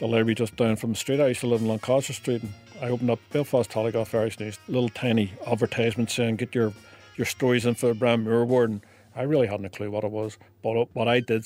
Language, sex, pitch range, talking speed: English, male, 110-125 Hz, 255 wpm